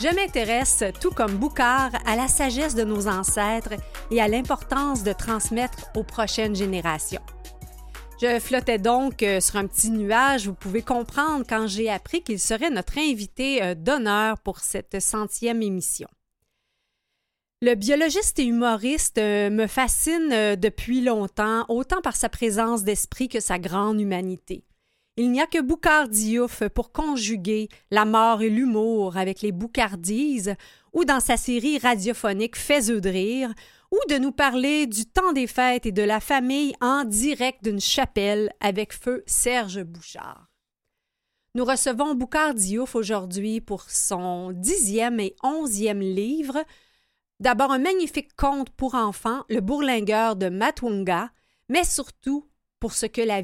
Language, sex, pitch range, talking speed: French, female, 210-270 Hz, 145 wpm